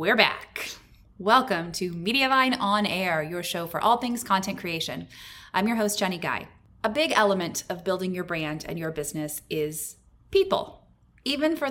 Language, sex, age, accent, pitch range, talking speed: English, female, 20-39, American, 175-210 Hz, 170 wpm